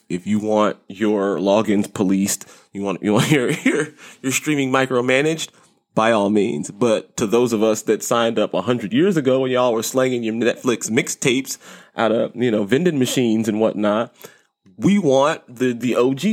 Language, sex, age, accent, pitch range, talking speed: English, male, 20-39, American, 105-135 Hz, 185 wpm